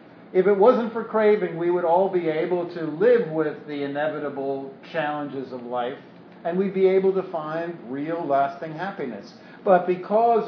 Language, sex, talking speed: English, male, 165 wpm